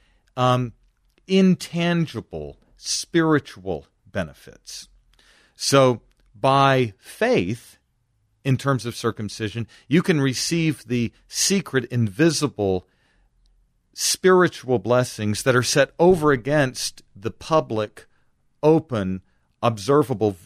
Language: English